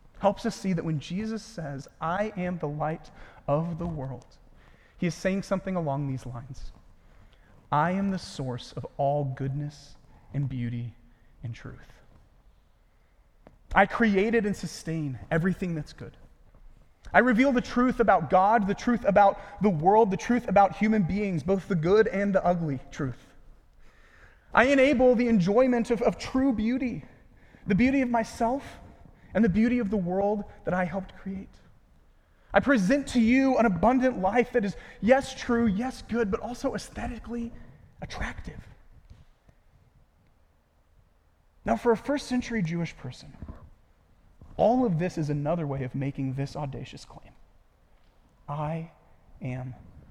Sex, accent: male, American